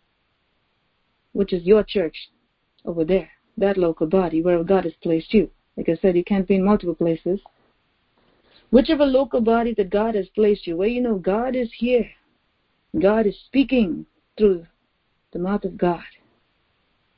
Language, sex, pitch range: English, female, 190-245 Hz